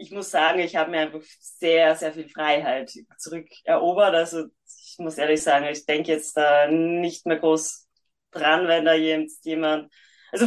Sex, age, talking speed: female, 20-39, 170 wpm